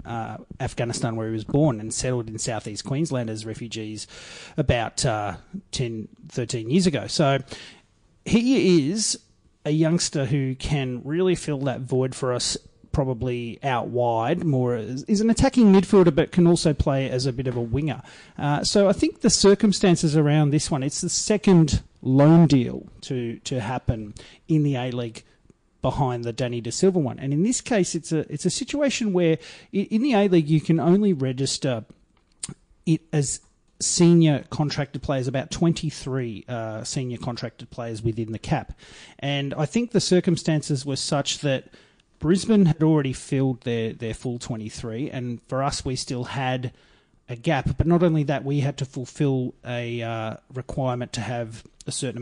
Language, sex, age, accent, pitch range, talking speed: English, male, 30-49, Australian, 120-165 Hz, 170 wpm